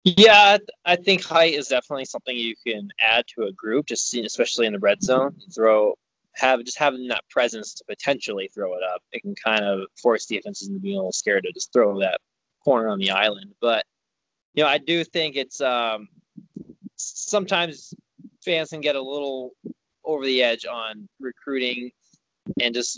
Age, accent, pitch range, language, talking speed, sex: 20-39, American, 120-150 Hz, English, 190 wpm, male